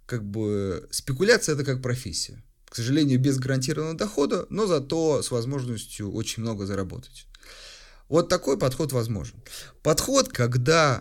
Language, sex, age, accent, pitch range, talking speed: Russian, male, 30-49, native, 110-140 Hz, 130 wpm